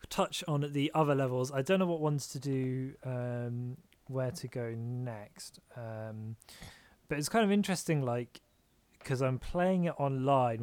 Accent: British